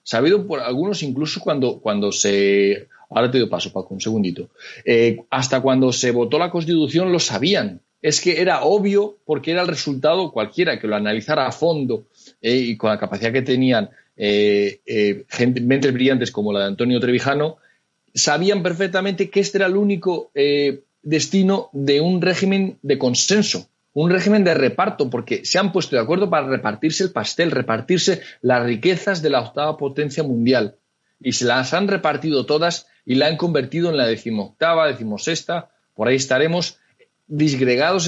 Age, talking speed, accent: 40-59, 170 wpm, Spanish